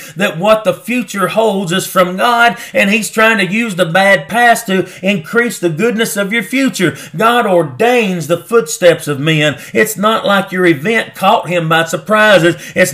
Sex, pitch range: male, 175-225 Hz